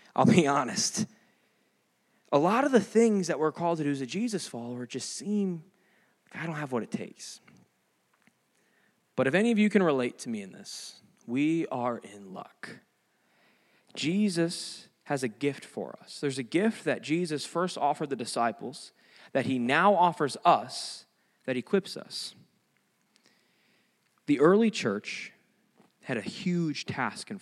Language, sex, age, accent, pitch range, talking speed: English, male, 20-39, American, 155-205 Hz, 155 wpm